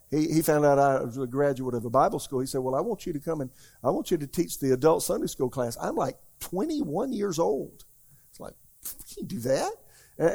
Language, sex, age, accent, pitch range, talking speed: English, male, 50-69, American, 120-145 Hz, 245 wpm